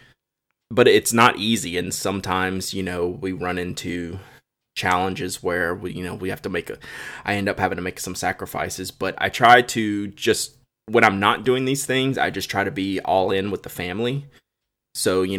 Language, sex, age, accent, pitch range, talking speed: English, male, 20-39, American, 95-115 Hz, 200 wpm